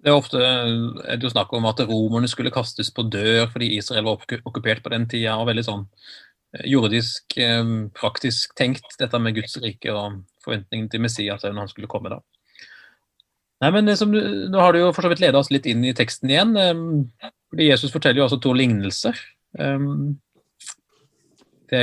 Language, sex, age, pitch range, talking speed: English, male, 30-49, 115-145 Hz, 180 wpm